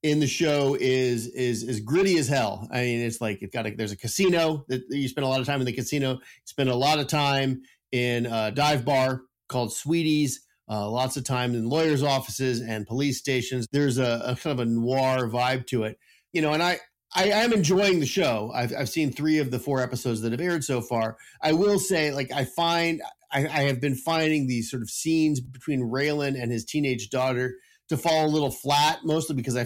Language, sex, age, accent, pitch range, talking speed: English, male, 40-59, American, 120-150 Hz, 225 wpm